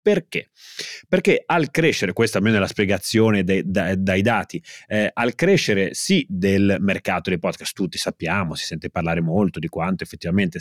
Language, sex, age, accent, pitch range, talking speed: Italian, male, 30-49, native, 100-135 Hz, 170 wpm